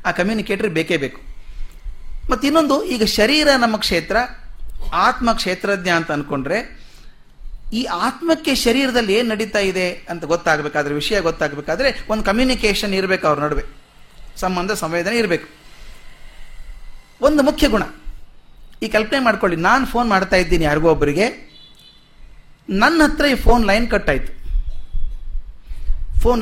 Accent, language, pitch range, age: native, Kannada, 150-235 Hz, 30-49